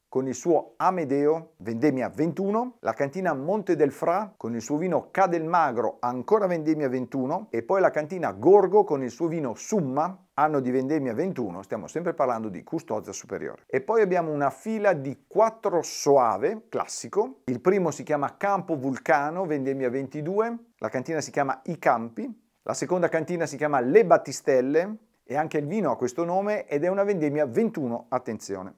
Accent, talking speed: native, 170 wpm